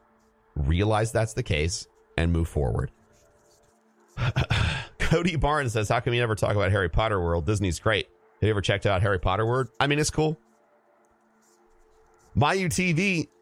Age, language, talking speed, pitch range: 30-49, English, 150 wpm, 90-120 Hz